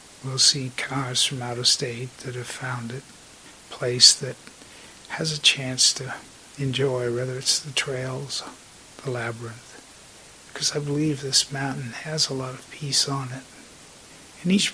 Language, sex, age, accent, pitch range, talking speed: English, male, 50-69, American, 125-140 Hz, 165 wpm